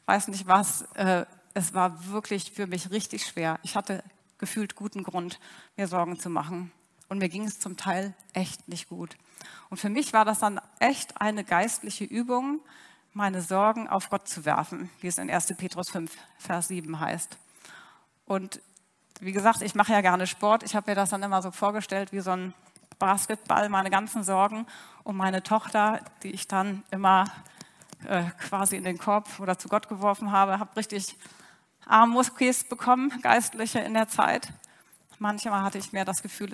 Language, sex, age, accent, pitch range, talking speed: German, female, 30-49, German, 190-215 Hz, 175 wpm